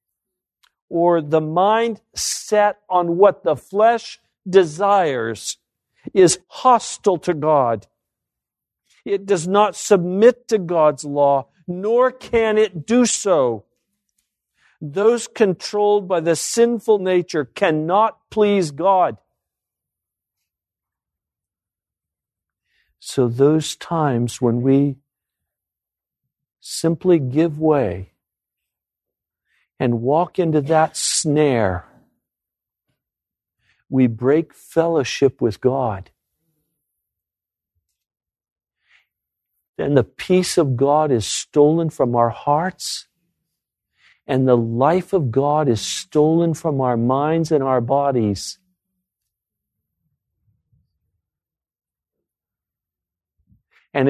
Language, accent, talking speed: English, American, 85 wpm